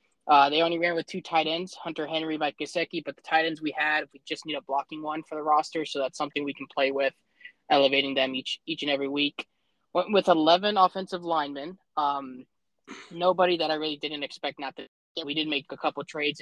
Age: 20-39